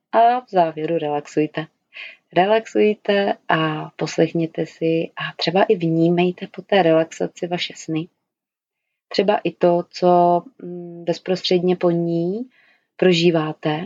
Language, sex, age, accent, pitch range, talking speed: Czech, female, 30-49, native, 165-185 Hz, 110 wpm